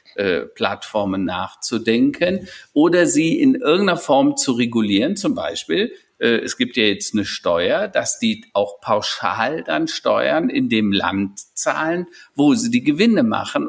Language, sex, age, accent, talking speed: German, male, 50-69, German, 140 wpm